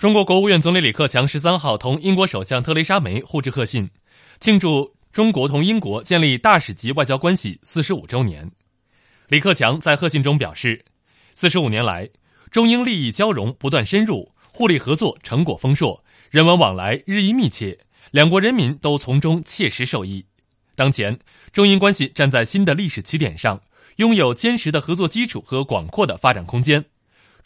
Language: Chinese